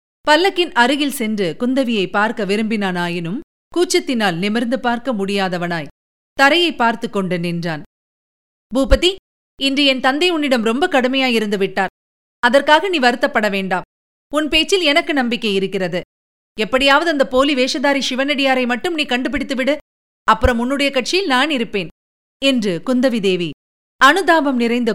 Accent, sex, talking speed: native, female, 115 wpm